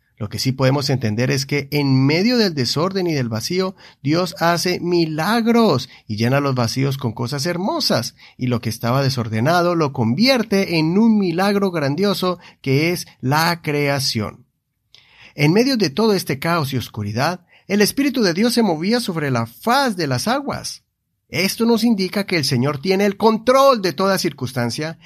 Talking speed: 170 wpm